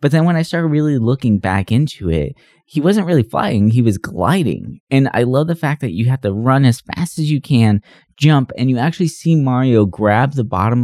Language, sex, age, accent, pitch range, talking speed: English, male, 20-39, American, 100-130 Hz, 225 wpm